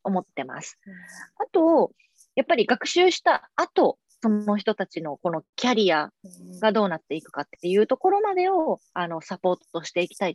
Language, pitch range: Japanese, 165-235 Hz